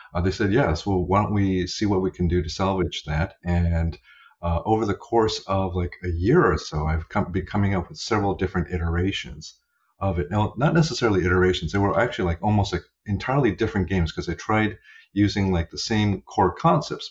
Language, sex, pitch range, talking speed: English, male, 85-105 Hz, 200 wpm